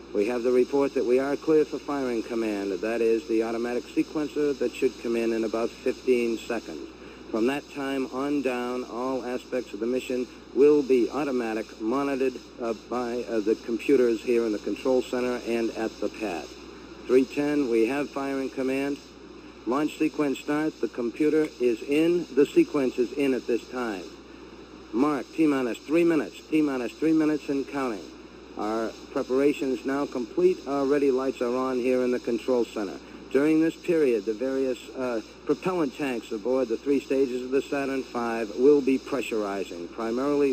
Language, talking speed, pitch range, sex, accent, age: English, 170 wpm, 120-145 Hz, male, American, 50-69